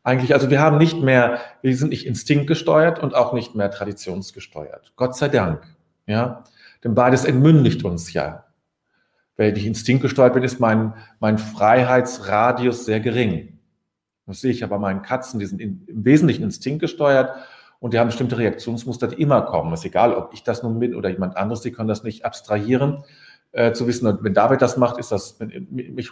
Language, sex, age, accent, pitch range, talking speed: German, male, 40-59, German, 110-140 Hz, 195 wpm